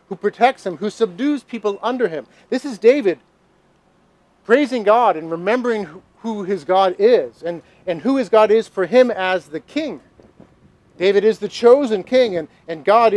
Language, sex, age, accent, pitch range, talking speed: English, male, 40-59, American, 175-215 Hz, 175 wpm